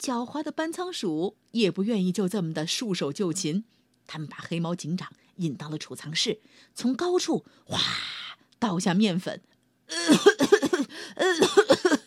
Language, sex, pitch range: Chinese, female, 170-270 Hz